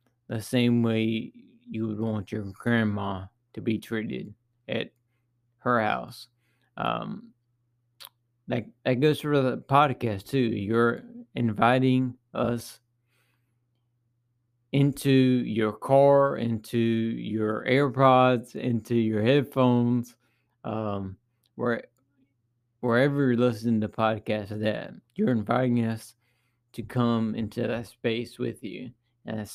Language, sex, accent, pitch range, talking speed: English, male, American, 115-125 Hz, 110 wpm